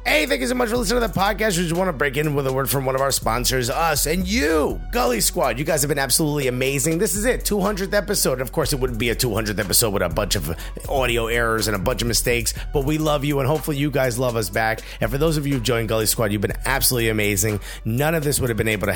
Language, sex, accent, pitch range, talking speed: English, male, American, 105-140 Hz, 290 wpm